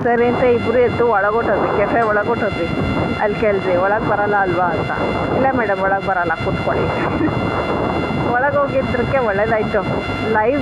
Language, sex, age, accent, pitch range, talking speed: Kannada, female, 20-39, native, 195-235 Hz, 135 wpm